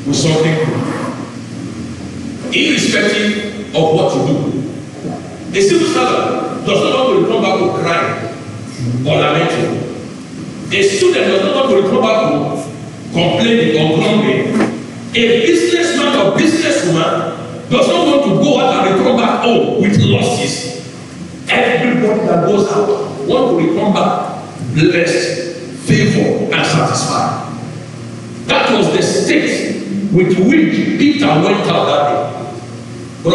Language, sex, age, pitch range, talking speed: English, male, 50-69, 170-275 Hz, 130 wpm